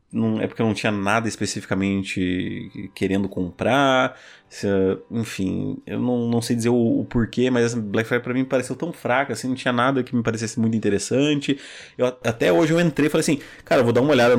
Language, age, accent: Portuguese, 30-49, Brazilian